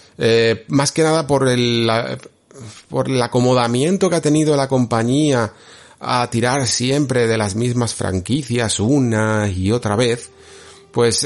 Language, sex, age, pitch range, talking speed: Spanish, male, 40-59, 95-125 Hz, 145 wpm